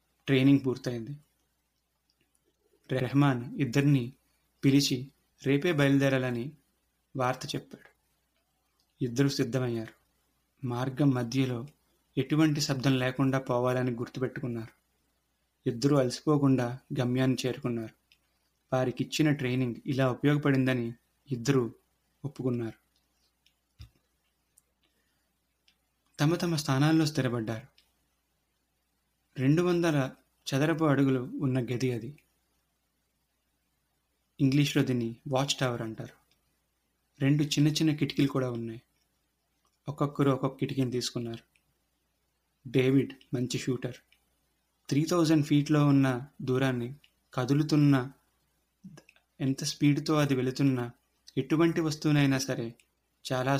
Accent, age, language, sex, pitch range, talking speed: native, 30-49, Telugu, male, 115-140 Hz, 80 wpm